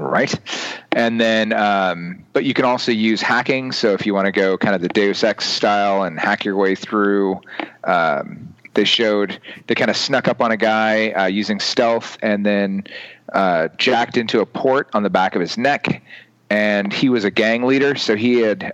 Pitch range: 100-120 Hz